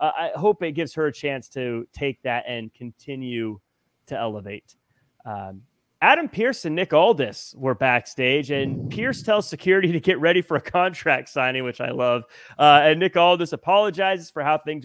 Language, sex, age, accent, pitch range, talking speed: English, male, 30-49, American, 140-185 Hz, 180 wpm